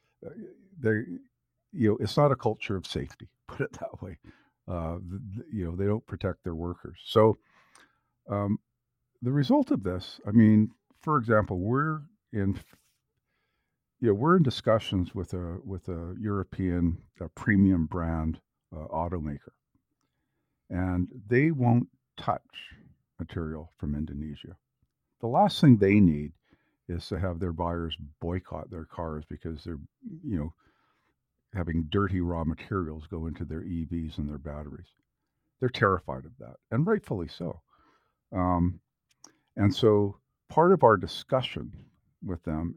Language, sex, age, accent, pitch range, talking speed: English, male, 50-69, American, 80-110 Hz, 135 wpm